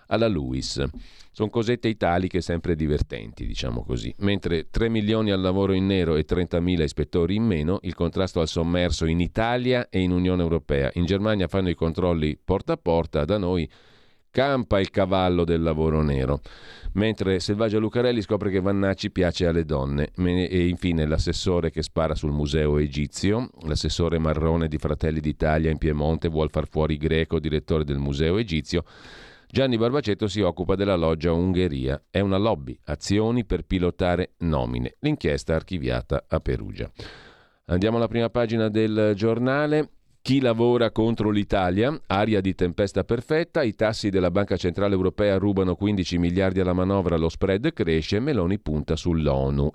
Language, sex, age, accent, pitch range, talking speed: Italian, male, 40-59, native, 80-105 Hz, 155 wpm